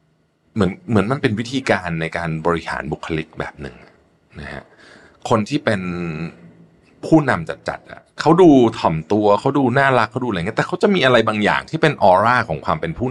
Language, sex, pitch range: Thai, male, 85-120 Hz